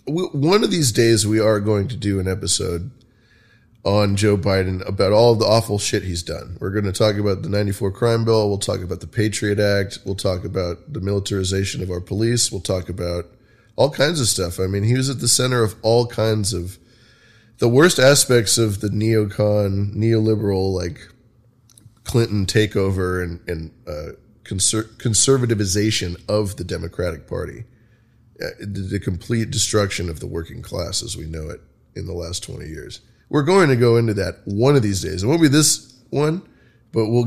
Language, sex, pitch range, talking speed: English, male, 95-120 Hz, 180 wpm